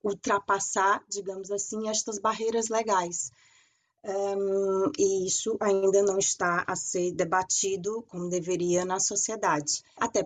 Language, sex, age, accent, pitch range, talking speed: Portuguese, female, 20-39, Brazilian, 190-225 Hz, 115 wpm